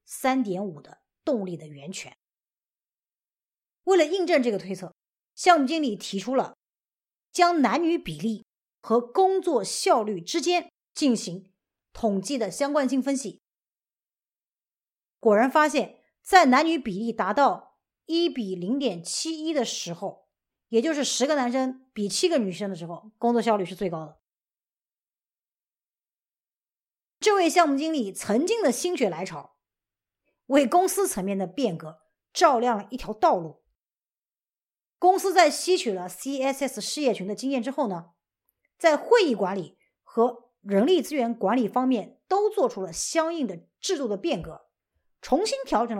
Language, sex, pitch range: Chinese, female, 200-305 Hz